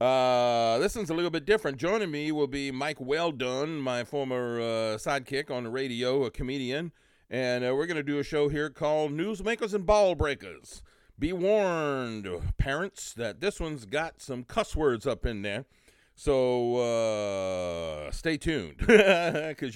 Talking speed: 165 wpm